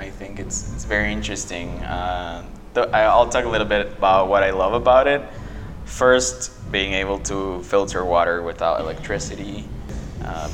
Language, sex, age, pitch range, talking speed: English, male, 20-39, 90-105 Hz, 160 wpm